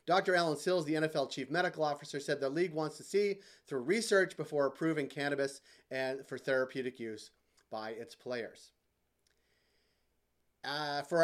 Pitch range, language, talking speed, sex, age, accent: 135-165 Hz, English, 150 wpm, male, 30-49, American